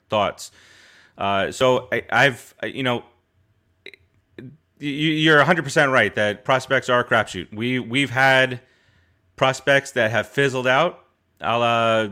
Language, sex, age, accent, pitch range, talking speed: English, male, 30-49, American, 105-135 Hz, 130 wpm